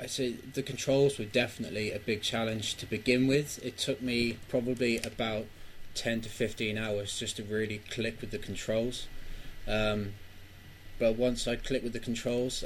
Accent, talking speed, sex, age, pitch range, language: British, 170 wpm, male, 20-39, 105-120 Hz, English